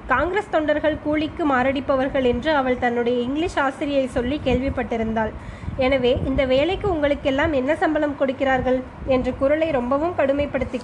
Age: 20-39